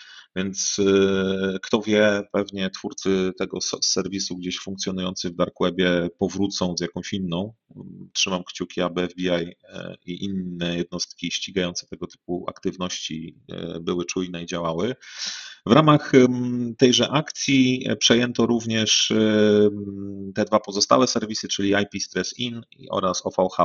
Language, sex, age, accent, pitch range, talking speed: Polish, male, 30-49, native, 90-115 Hz, 120 wpm